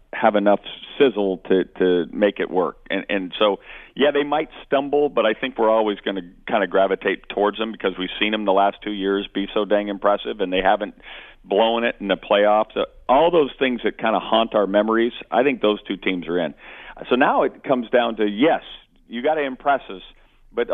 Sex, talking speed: male, 220 wpm